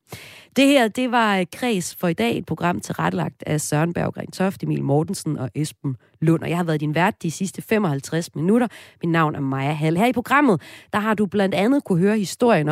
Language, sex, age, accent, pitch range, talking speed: Danish, female, 30-49, native, 150-205 Hz, 215 wpm